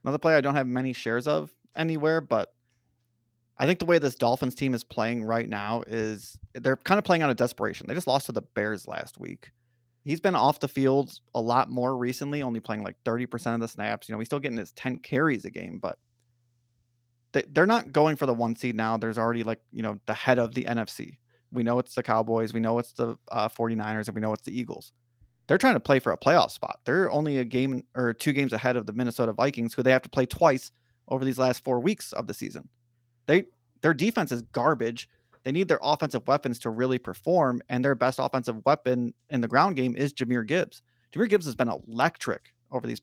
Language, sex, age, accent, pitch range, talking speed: English, male, 30-49, American, 120-140 Hz, 230 wpm